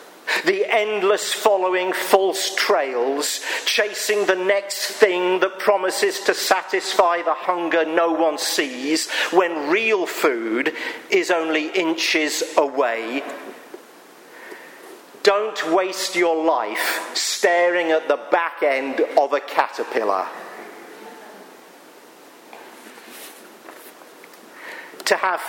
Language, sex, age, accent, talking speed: English, male, 50-69, British, 90 wpm